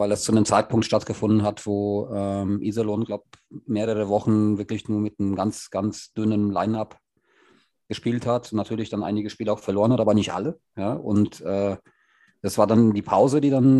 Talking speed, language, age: 185 wpm, German, 40-59